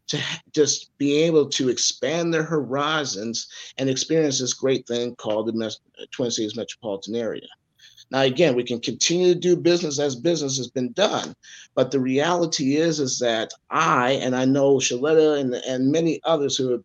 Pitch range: 125-155 Hz